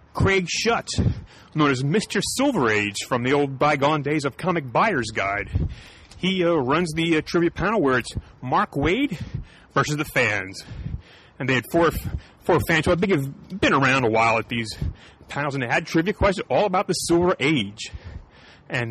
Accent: American